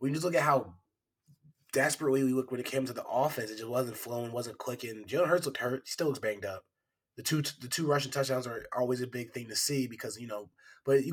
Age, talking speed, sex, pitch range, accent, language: 20-39, 260 wpm, male, 120-145 Hz, American, English